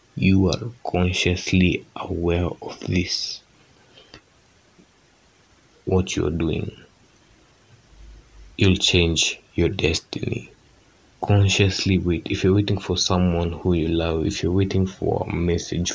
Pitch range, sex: 85-100 Hz, male